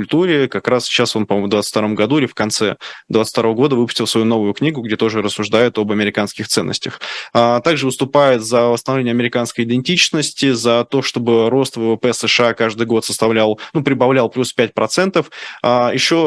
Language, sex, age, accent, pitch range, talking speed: Russian, male, 20-39, native, 115-135 Hz, 175 wpm